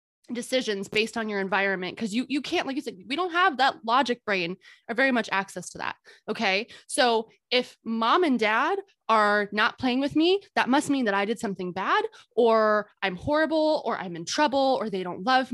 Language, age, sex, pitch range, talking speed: English, 20-39, female, 200-280 Hz, 210 wpm